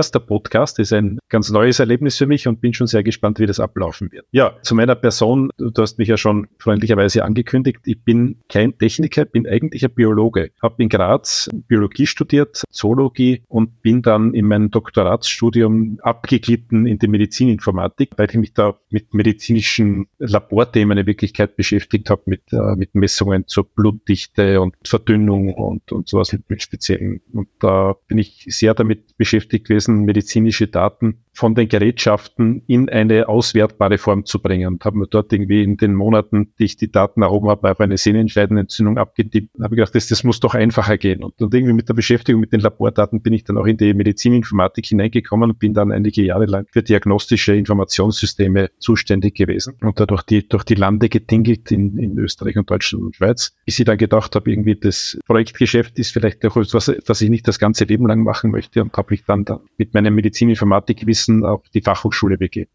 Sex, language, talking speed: male, German, 195 wpm